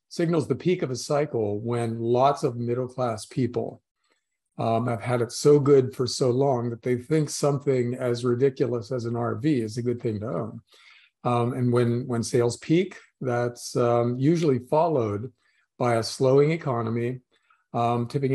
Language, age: English, 40-59